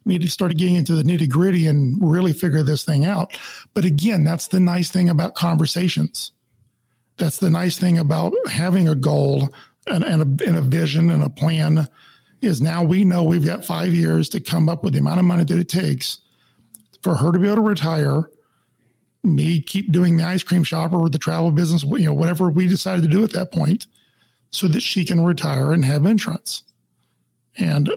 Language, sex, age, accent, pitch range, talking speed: English, male, 50-69, American, 155-185 Hz, 205 wpm